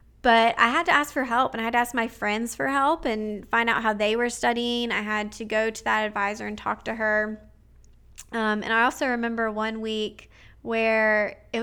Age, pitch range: 20-39, 215-245 Hz